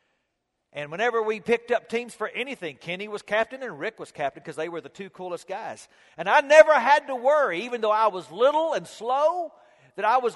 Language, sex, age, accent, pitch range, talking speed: English, male, 50-69, American, 205-310 Hz, 220 wpm